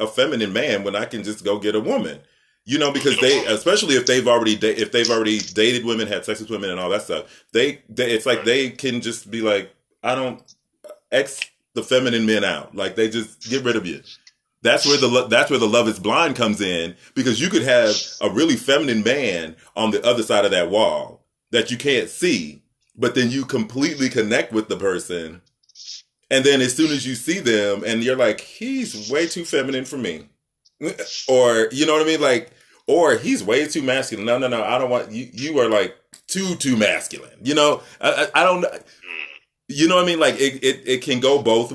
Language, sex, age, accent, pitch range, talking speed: English, male, 30-49, American, 110-135 Hz, 220 wpm